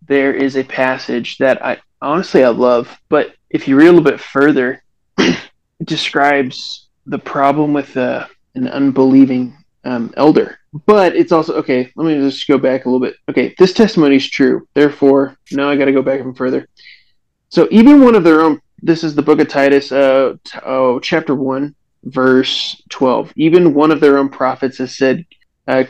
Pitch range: 130-155 Hz